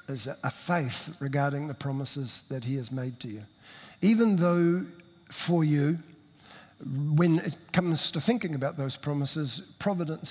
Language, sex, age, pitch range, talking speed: English, male, 60-79, 140-175 Hz, 145 wpm